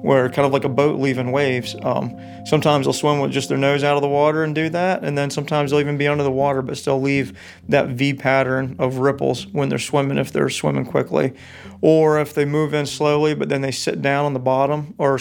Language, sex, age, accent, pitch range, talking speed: English, male, 40-59, American, 130-145 Hz, 245 wpm